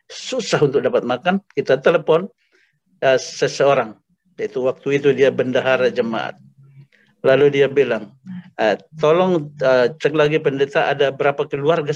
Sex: male